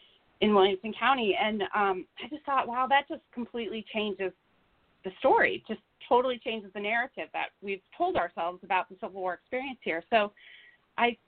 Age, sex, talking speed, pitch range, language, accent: 30-49, female, 170 wpm, 195-245 Hz, English, American